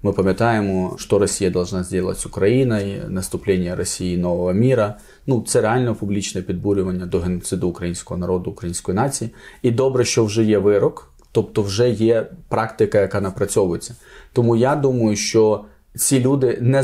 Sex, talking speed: male, 150 wpm